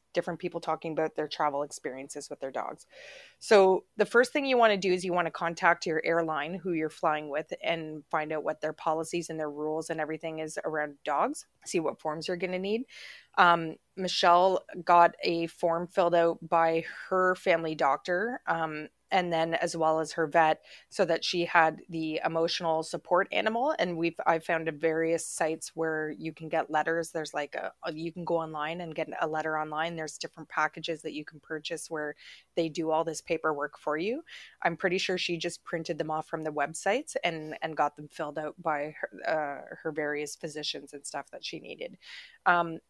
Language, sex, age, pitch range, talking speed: English, female, 30-49, 155-175 Hz, 200 wpm